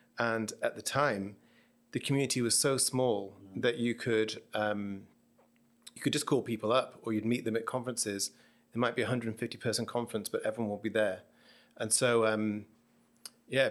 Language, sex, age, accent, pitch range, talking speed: English, male, 30-49, British, 105-120 Hz, 175 wpm